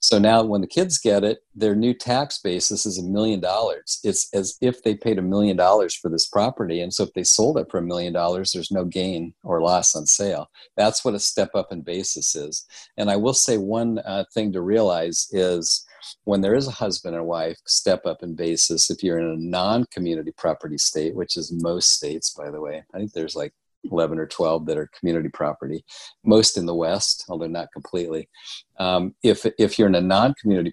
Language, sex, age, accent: English, male, 50-69, American